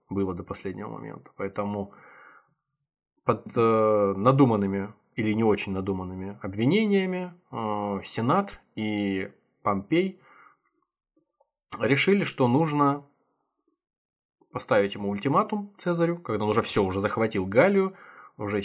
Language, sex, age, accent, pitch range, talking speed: Russian, male, 20-39, native, 100-145 Hz, 95 wpm